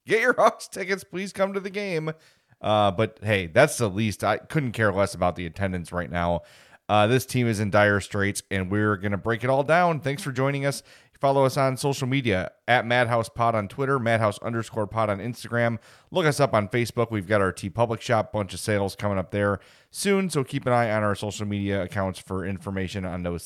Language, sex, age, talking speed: English, male, 30-49, 225 wpm